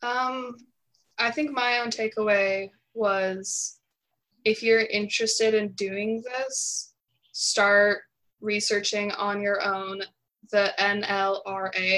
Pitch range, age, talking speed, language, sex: 195-225 Hz, 20-39, 100 wpm, English, female